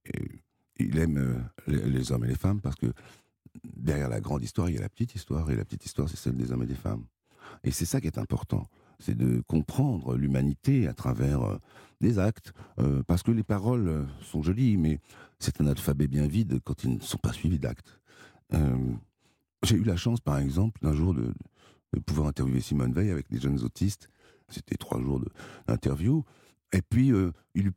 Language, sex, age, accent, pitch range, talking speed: French, male, 60-79, French, 70-110 Hz, 205 wpm